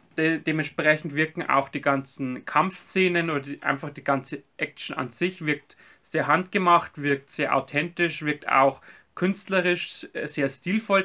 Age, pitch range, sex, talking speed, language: 30-49, 140-165 Hz, male, 130 wpm, German